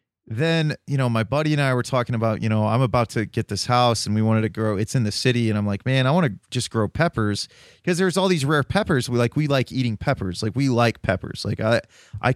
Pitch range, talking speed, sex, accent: 110-135 Hz, 270 wpm, male, American